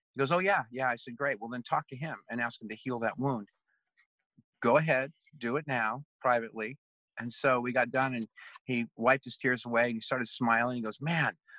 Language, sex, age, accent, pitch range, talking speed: English, male, 50-69, American, 115-140 Hz, 230 wpm